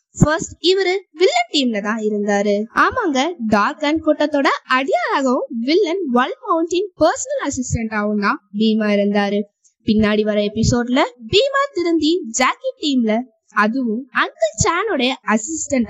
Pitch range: 220-335 Hz